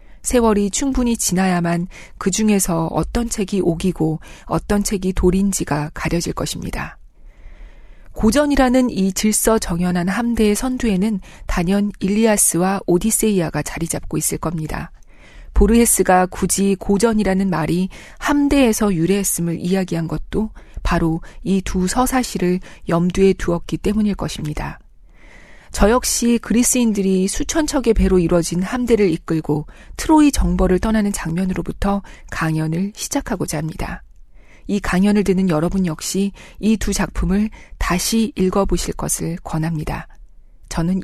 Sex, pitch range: female, 175-220 Hz